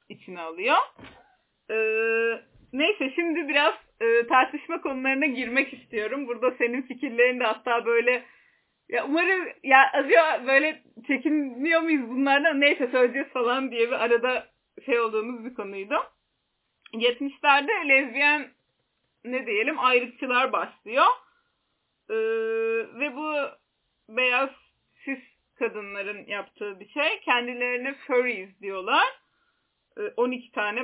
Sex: female